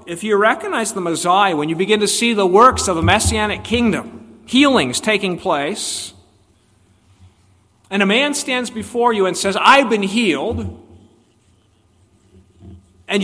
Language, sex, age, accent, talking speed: English, male, 50-69, American, 140 wpm